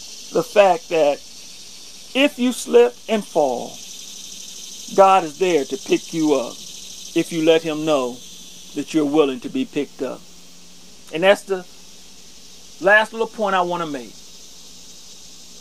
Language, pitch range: English, 165-235 Hz